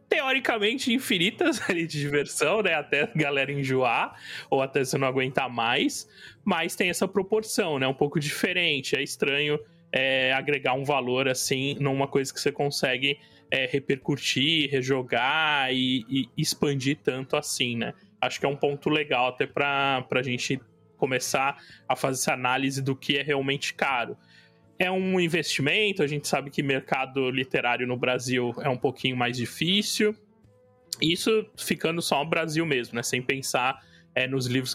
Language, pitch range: Portuguese, 125-155 Hz